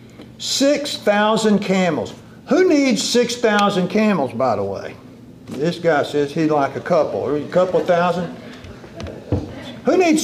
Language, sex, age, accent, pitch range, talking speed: English, male, 50-69, American, 175-255 Hz, 125 wpm